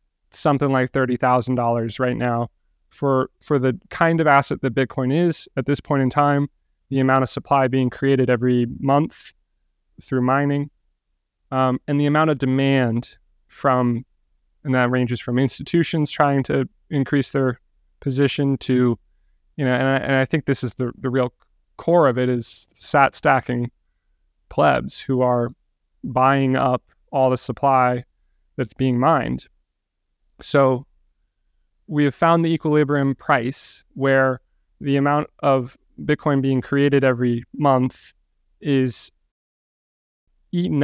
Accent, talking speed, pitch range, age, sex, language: American, 140 wpm, 120-140 Hz, 20-39, male, English